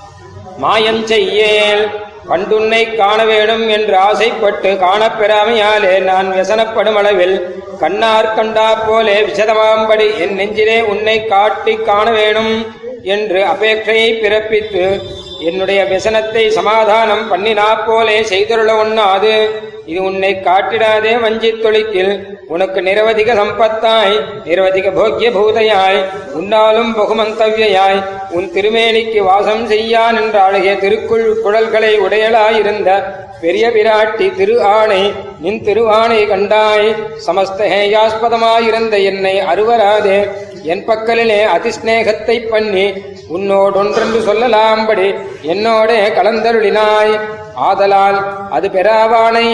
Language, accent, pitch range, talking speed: Tamil, native, 200-225 Hz, 90 wpm